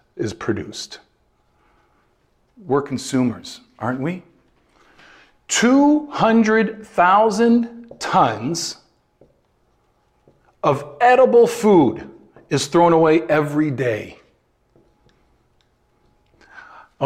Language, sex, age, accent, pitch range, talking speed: English, male, 40-59, American, 130-180 Hz, 60 wpm